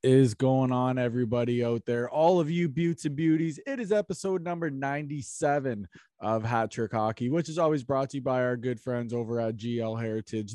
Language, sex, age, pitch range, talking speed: English, male, 20-39, 115-145 Hz, 200 wpm